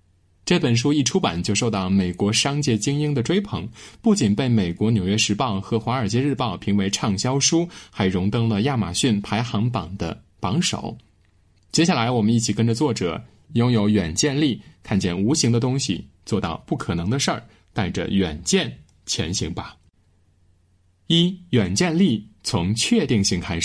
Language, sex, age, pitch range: Chinese, male, 20-39, 95-140 Hz